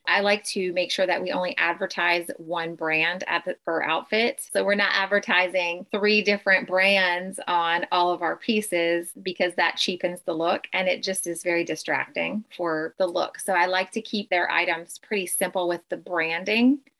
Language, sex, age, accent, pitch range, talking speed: English, female, 30-49, American, 175-200 Hz, 185 wpm